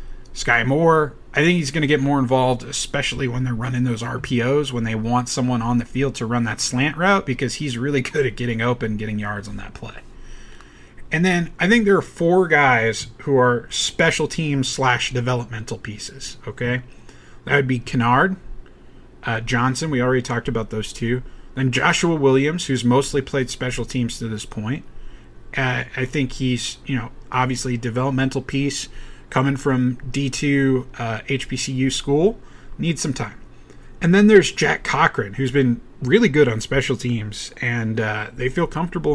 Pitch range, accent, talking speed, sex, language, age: 120-145 Hz, American, 175 wpm, male, English, 30-49